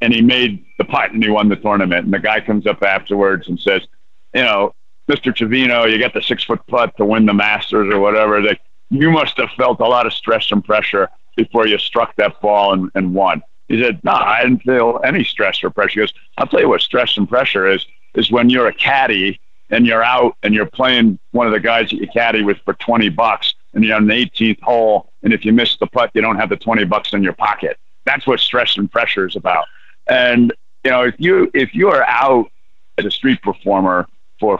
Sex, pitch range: male, 105-120 Hz